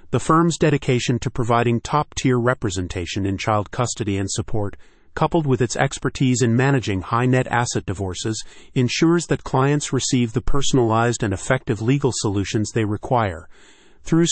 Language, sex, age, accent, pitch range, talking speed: English, male, 40-59, American, 110-135 Hz, 145 wpm